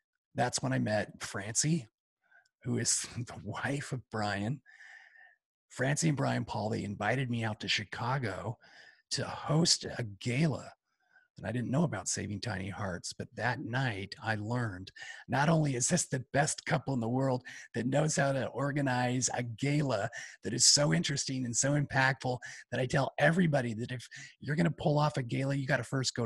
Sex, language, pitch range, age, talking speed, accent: male, English, 110-140 Hz, 40-59, 180 wpm, American